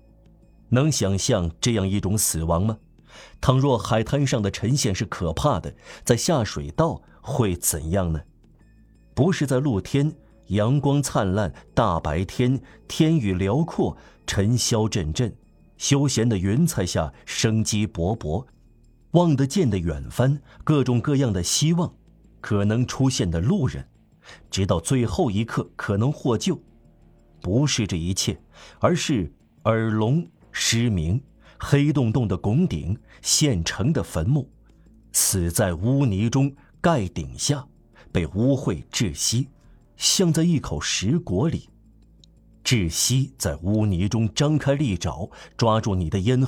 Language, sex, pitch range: Chinese, male, 95-135 Hz